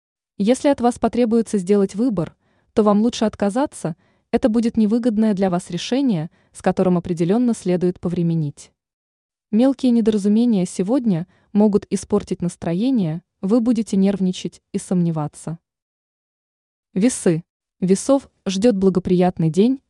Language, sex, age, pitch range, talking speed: Russian, female, 20-39, 175-225 Hz, 110 wpm